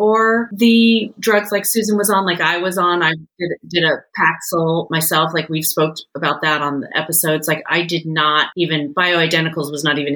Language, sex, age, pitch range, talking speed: English, female, 30-49, 160-210 Hz, 200 wpm